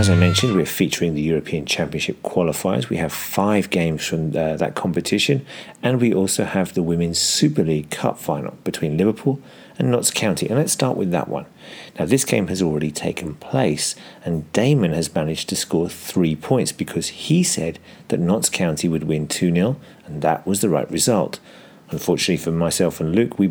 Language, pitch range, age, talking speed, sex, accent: English, 80-105 Hz, 40-59, 185 wpm, male, British